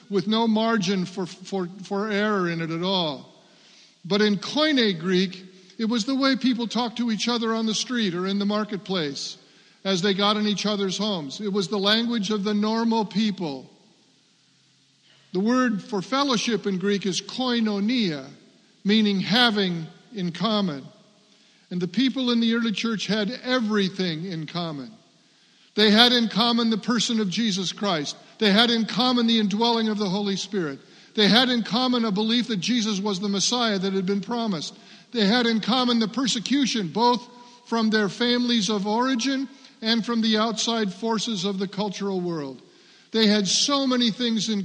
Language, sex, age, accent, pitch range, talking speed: English, male, 50-69, American, 195-230 Hz, 175 wpm